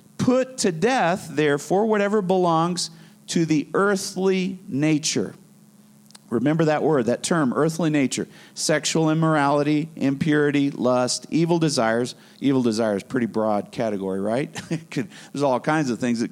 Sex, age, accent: male, 50-69, American